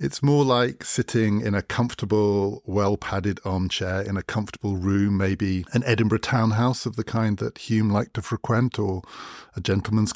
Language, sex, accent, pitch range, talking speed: English, male, British, 95-115 Hz, 165 wpm